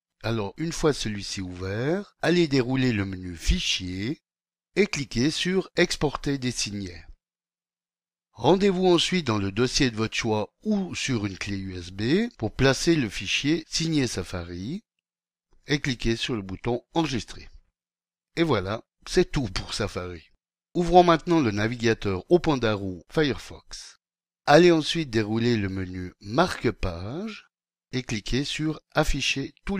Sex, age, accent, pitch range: male, 60-79, French, 100-165 Hz